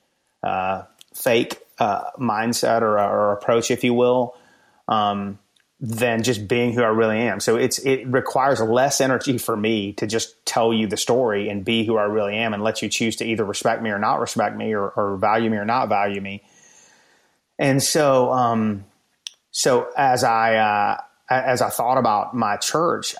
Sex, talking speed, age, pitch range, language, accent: male, 185 wpm, 30-49, 105-125 Hz, English, American